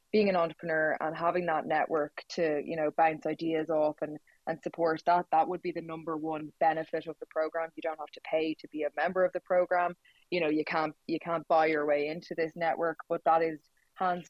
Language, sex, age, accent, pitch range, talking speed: English, female, 20-39, Irish, 155-165 Hz, 230 wpm